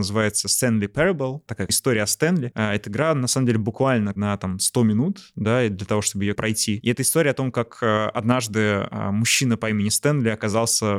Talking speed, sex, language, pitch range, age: 190 wpm, male, Russian, 105-125 Hz, 20-39